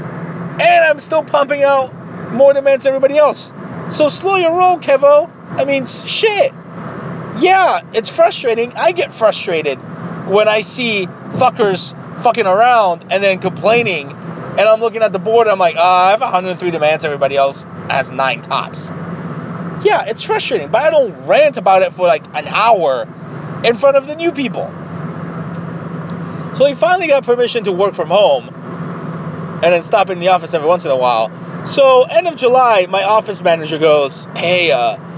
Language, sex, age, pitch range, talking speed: English, male, 30-49, 165-230 Hz, 170 wpm